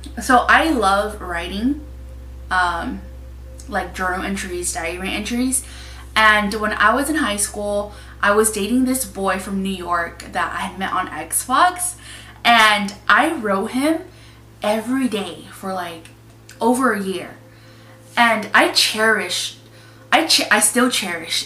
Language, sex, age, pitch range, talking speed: English, female, 20-39, 175-235 Hz, 140 wpm